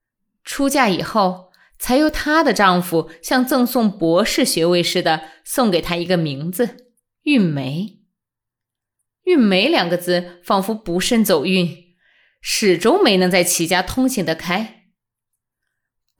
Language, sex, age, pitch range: Chinese, female, 20-39, 170-260 Hz